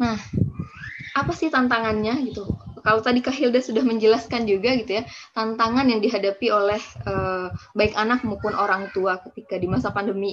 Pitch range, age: 195-245 Hz, 20-39